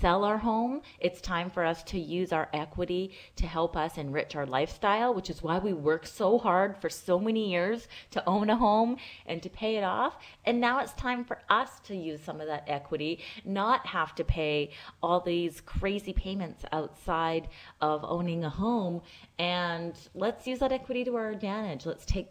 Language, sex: English, female